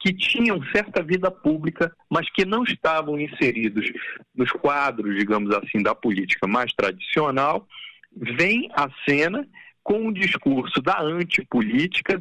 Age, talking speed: 50-69, 130 wpm